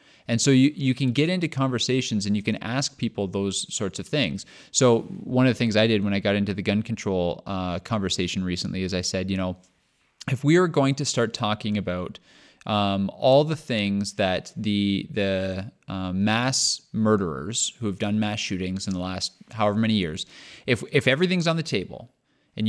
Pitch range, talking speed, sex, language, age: 100-130 Hz, 200 wpm, male, English, 30-49